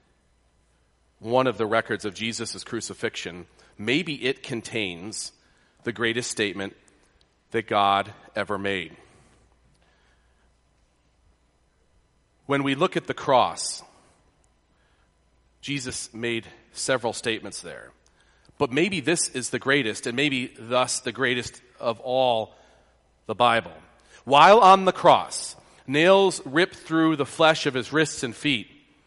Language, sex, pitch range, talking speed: English, male, 115-160 Hz, 120 wpm